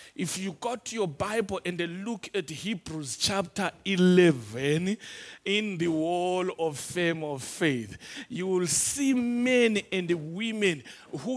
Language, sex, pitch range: English, male, 155-215 Hz